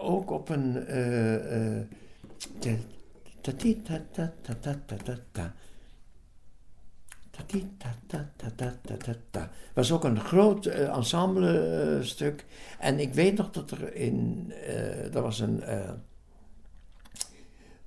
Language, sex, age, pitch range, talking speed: Dutch, male, 60-79, 115-185 Hz, 95 wpm